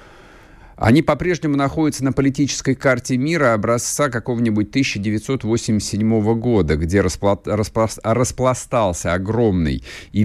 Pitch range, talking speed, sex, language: 90-120 Hz, 100 wpm, male, Russian